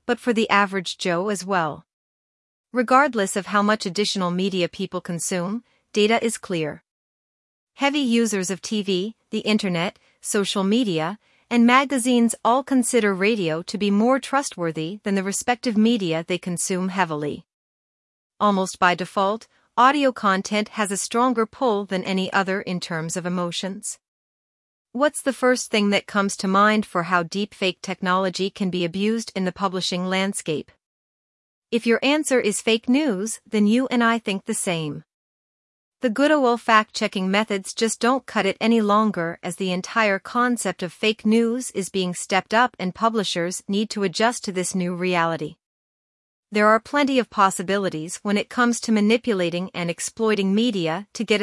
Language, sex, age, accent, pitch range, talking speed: English, female, 40-59, American, 185-230 Hz, 160 wpm